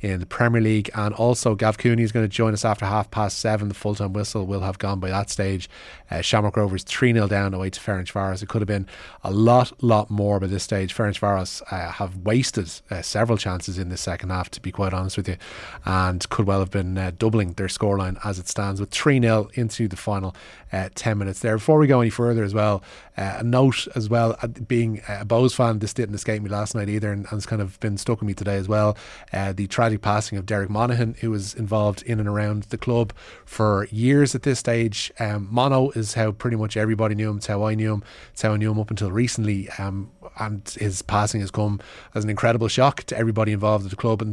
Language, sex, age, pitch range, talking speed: English, male, 20-39, 100-115 Hz, 245 wpm